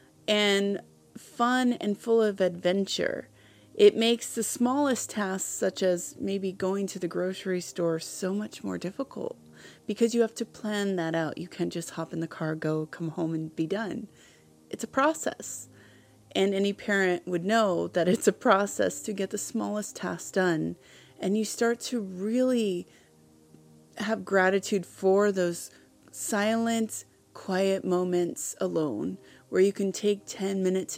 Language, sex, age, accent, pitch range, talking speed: English, female, 30-49, American, 170-215 Hz, 155 wpm